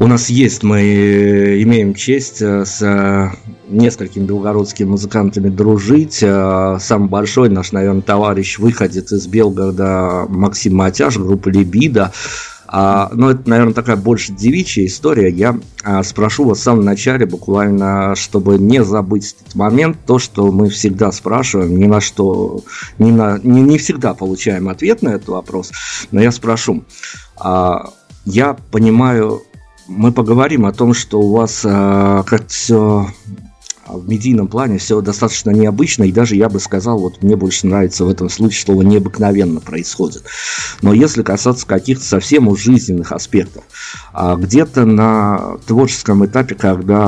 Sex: male